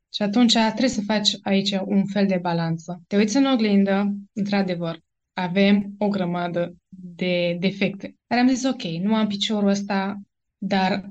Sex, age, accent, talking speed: female, 20-39, native, 155 wpm